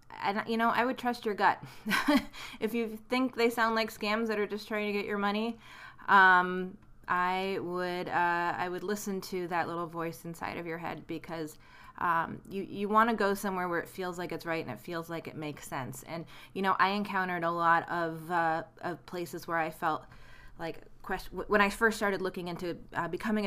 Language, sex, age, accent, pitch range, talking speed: English, female, 20-39, American, 165-205 Hz, 210 wpm